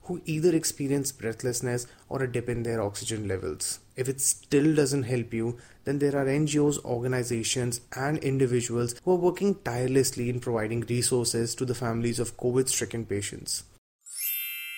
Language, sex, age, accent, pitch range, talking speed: Hindi, male, 20-39, native, 115-135 Hz, 155 wpm